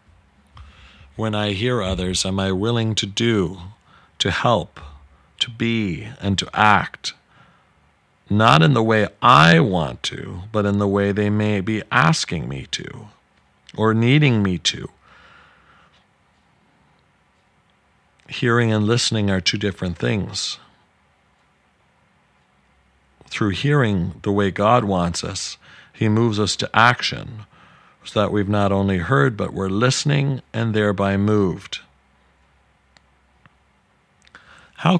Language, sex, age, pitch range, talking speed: English, male, 40-59, 90-115 Hz, 115 wpm